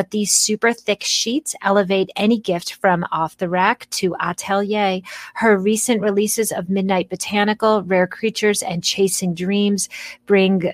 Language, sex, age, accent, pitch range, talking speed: English, female, 30-49, American, 175-210 Hz, 145 wpm